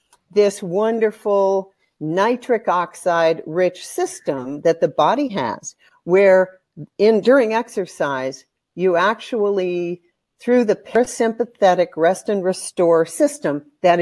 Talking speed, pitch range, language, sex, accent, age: 105 wpm, 165-215 Hz, English, female, American, 50-69